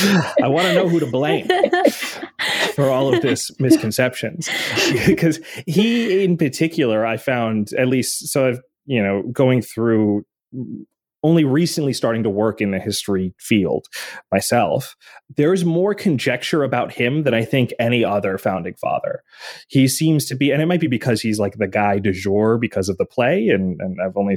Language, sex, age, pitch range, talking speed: English, male, 30-49, 105-165 Hz, 175 wpm